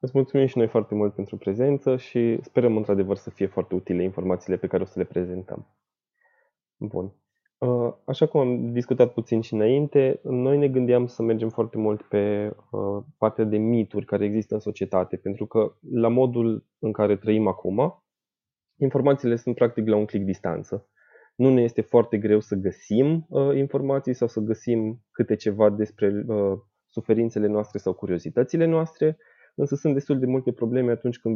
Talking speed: 165 wpm